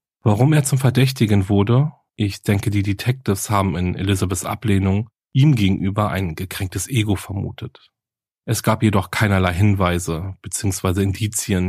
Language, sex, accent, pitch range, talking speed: German, male, German, 95-120 Hz, 135 wpm